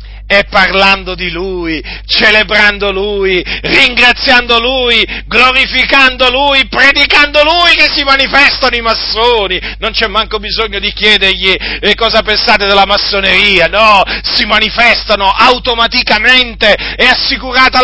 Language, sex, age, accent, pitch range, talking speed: Italian, male, 40-59, native, 225-280 Hz, 110 wpm